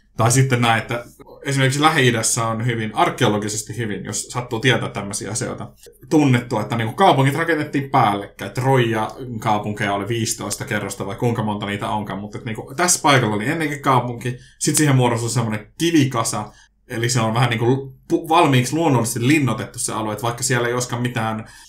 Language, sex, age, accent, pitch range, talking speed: Finnish, male, 20-39, native, 110-130 Hz, 150 wpm